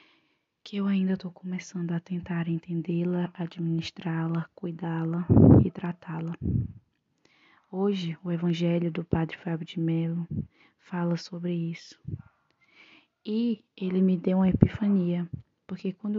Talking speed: 115 wpm